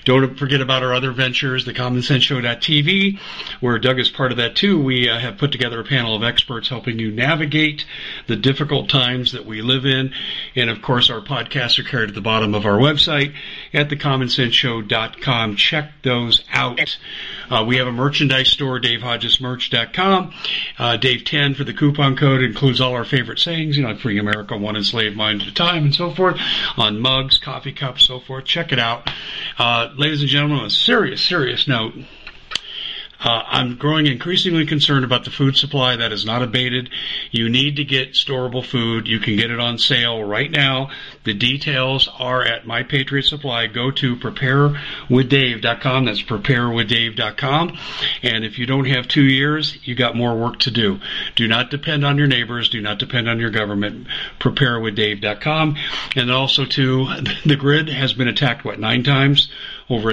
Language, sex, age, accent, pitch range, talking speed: English, male, 50-69, American, 115-140 Hz, 180 wpm